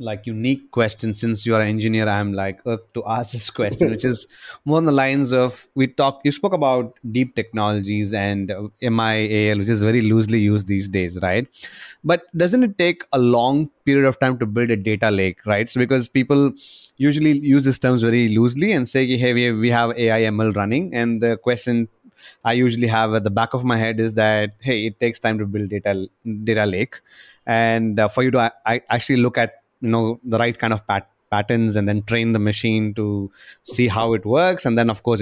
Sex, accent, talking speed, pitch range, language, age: male, Indian, 210 wpm, 110-130 Hz, English, 30-49